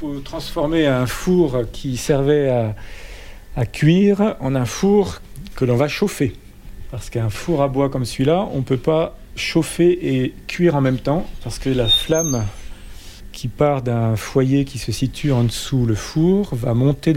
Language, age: French, 40-59